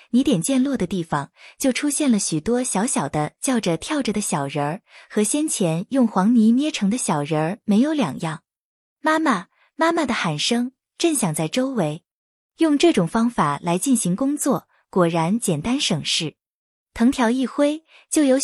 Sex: female